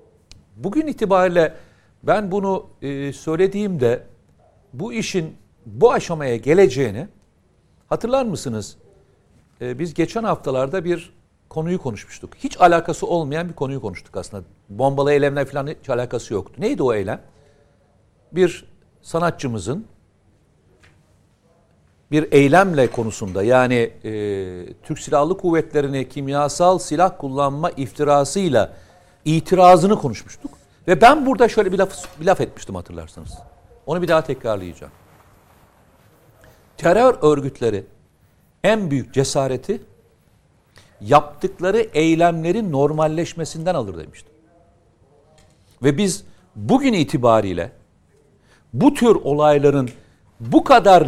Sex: male